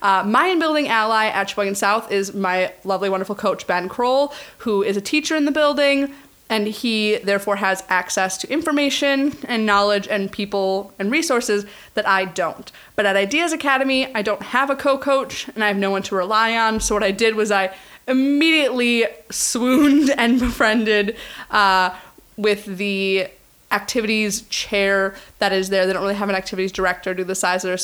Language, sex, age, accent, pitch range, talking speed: English, female, 20-39, American, 195-255 Hz, 180 wpm